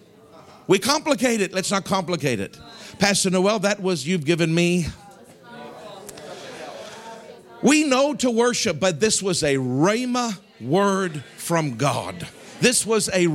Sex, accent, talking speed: male, American, 130 wpm